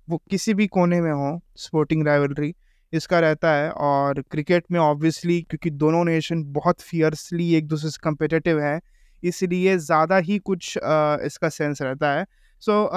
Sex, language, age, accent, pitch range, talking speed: male, Hindi, 20-39, native, 165-215 Hz, 160 wpm